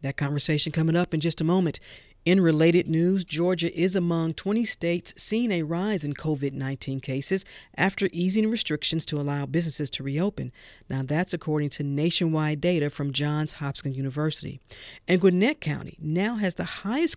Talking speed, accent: 165 wpm, American